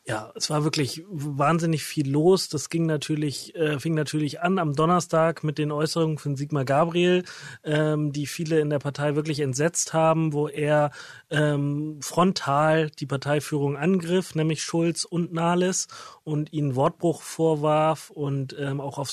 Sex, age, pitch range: male, 30-49, 145-170 Hz